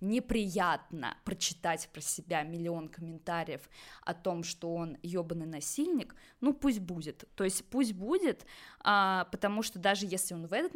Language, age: Russian, 20-39